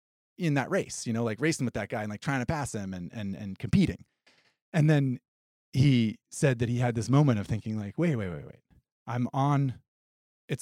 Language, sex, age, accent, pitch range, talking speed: English, male, 30-49, American, 105-135 Hz, 220 wpm